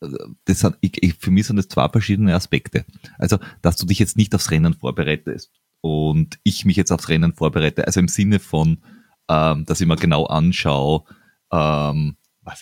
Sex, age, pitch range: male, 30-49, 85-105 Hz